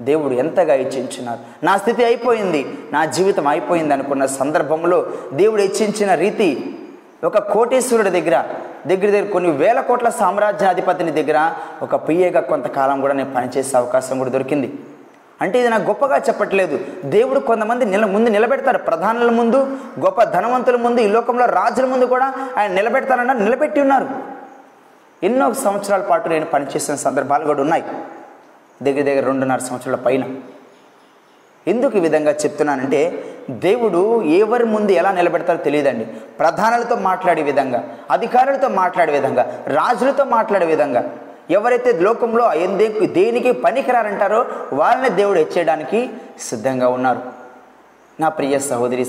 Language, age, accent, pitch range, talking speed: Telugu, 20-39, native, 150-245 Hz, 125 wpm